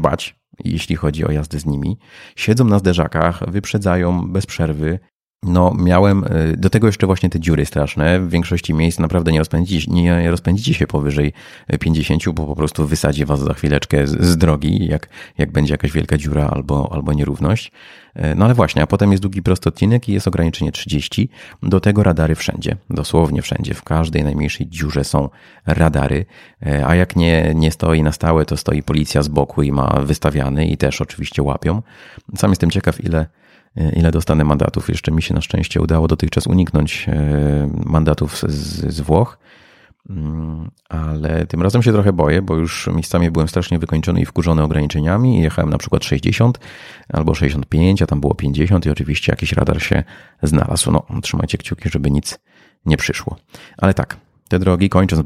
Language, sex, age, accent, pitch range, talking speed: Polish, male, 30-49, native, 75-90 Hz, 170 wpm